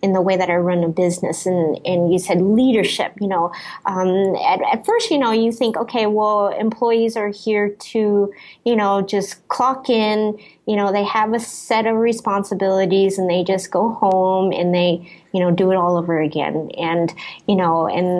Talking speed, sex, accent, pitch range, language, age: 200 wpm, female, American, 180-220 Hz, English, 30-49